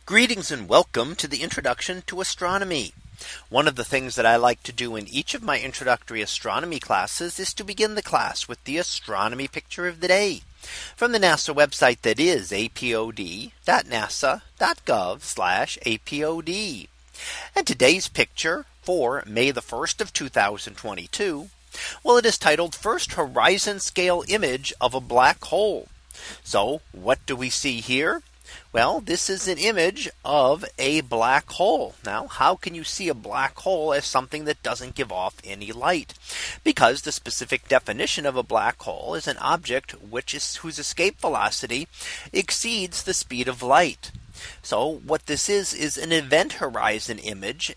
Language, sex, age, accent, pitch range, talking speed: English, male, 40-59, American, 125-185 Hz, 160 wpm